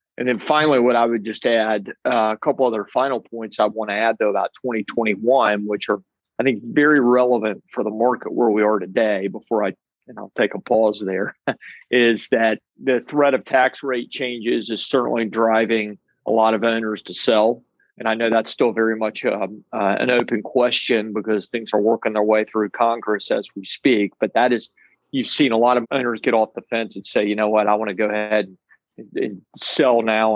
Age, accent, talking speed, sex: 40-59, American, 210 wpm, male